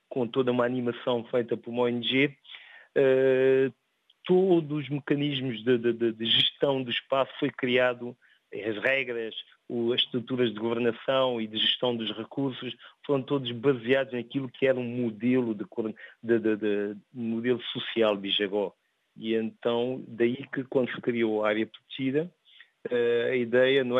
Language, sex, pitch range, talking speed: Portuguese, male, 115-135 Hz, 135 wpm